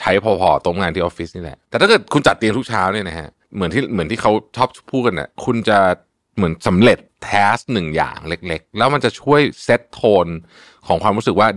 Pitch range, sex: 85-125 Hz, male